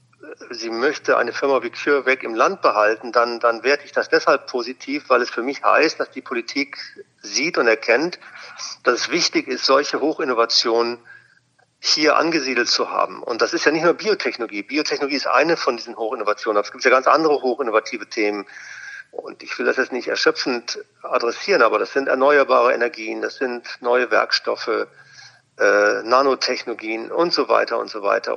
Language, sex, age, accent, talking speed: German, male, 50-69, German, 175 wpm